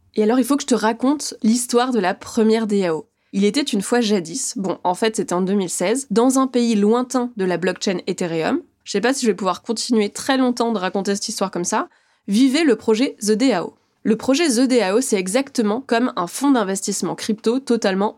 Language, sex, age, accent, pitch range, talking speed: French, female, 20-39, French, 190-240 Hz, 215 wpm